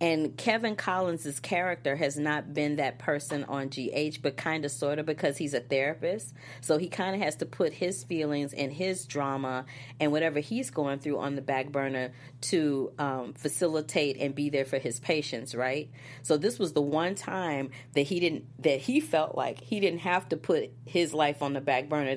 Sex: female